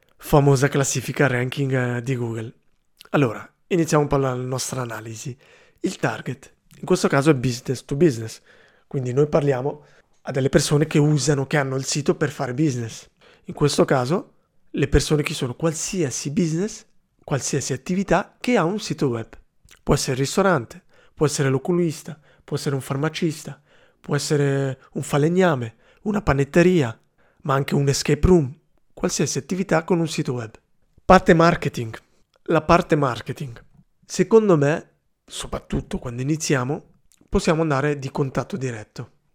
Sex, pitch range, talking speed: male, 135-170 Hz, 145 wpm